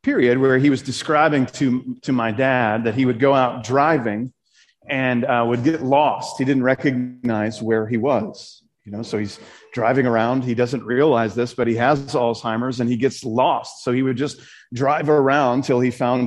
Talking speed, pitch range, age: 195 wpm, 115-135 Hz, 40-59